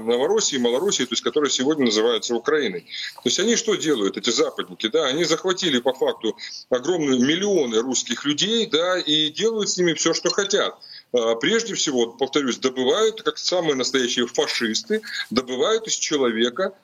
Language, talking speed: Russian, 155 wpm